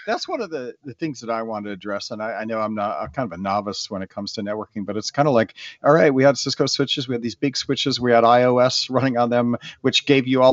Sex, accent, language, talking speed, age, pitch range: male, American, English, 300 wpm, 50-69, 115-145 Hz